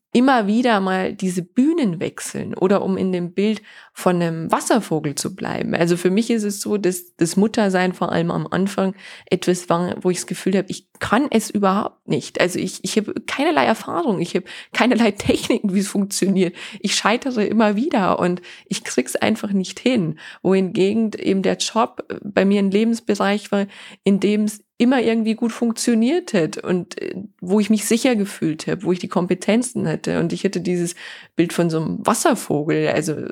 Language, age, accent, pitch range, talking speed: German, 20-39, German, 175-210 Hz, 185 wpm